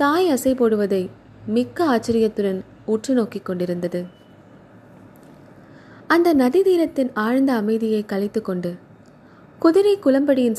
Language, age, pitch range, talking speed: Tamil, 20-39, 195-270 Hz, 80 wpm